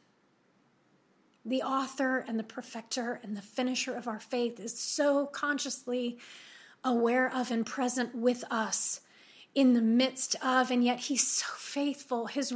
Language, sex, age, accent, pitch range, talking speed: English, female, 30-49, American, 250-305 Hz, 145 wpm